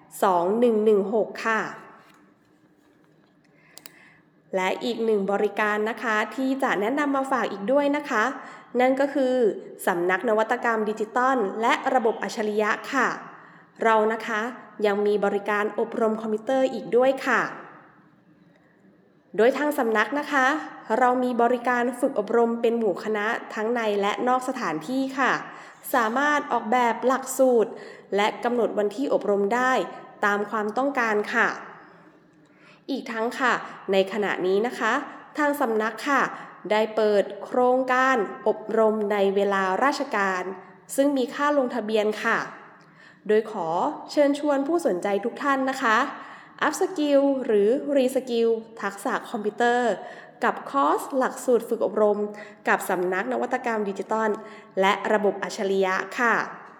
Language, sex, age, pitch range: English, female, 20-39, 210-260 Hz